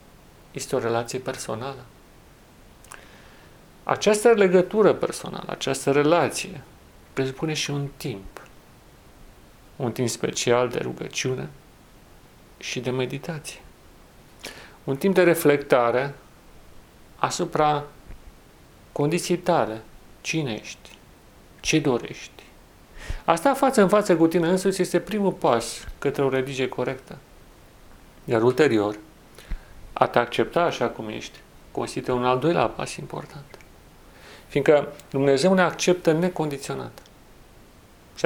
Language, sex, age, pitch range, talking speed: Romanian, male, 40-59, 115-155 Hz, 100 wpm